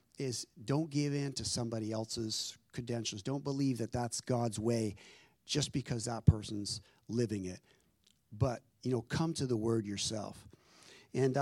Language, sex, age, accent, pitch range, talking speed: English, male, 50-69, American, 115-145 Hz, 150 wpm